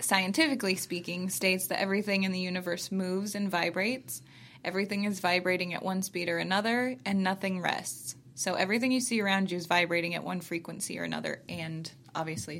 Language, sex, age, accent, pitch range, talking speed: English, female, 20-39, American, 170-195 Hz, 175 wpm